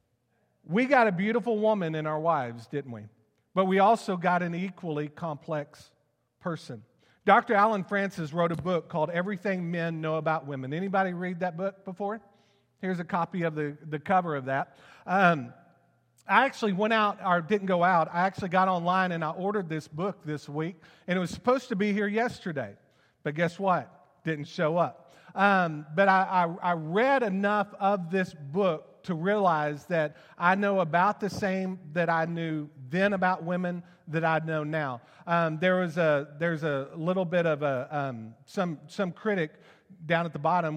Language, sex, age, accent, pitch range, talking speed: English, male, 40-59, American, 155-195 Hz, 180 wpm